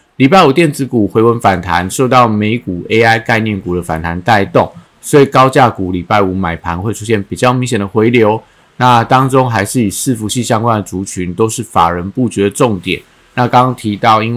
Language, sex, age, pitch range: Chinese, male, 50-69, 100-120 Hz